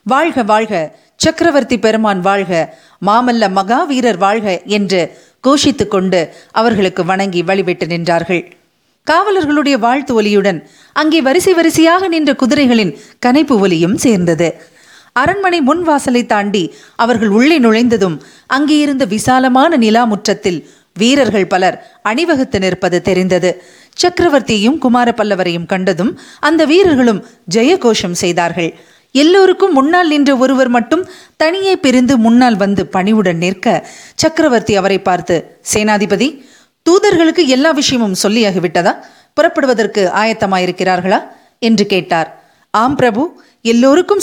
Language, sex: Tamil, female